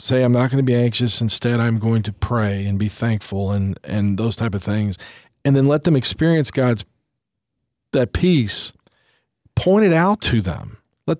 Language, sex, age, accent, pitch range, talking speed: English, male, 40-59, American, 105-125 Hz, 190 wpm